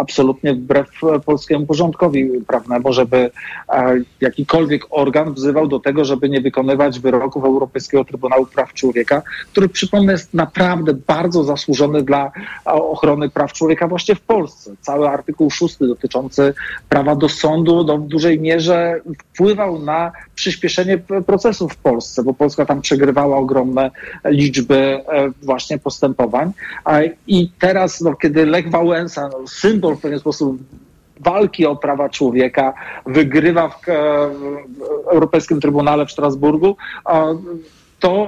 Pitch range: 140-175 Hz